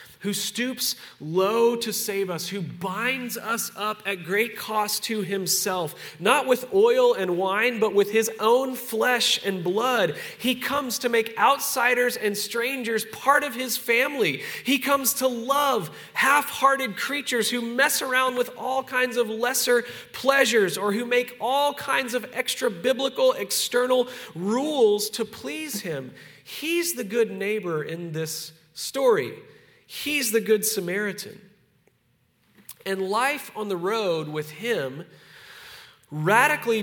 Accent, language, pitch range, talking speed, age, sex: American, English, 180-250 Hz, 140 wpm, 30-49, male